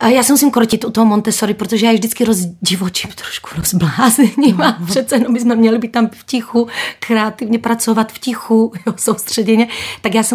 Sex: female